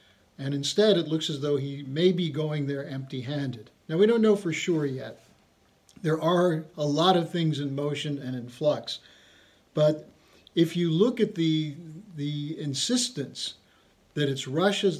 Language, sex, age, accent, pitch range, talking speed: English, male, 50-69, American, 140-175 Hz, 165 wpm